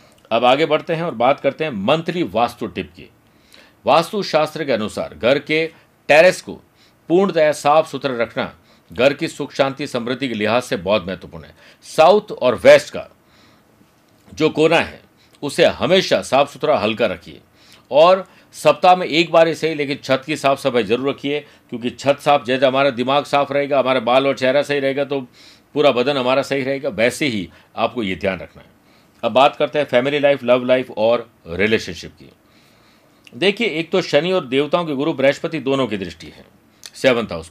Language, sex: Hindi, male